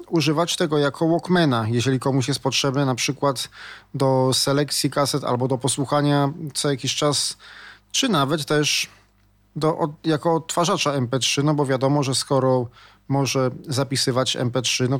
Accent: native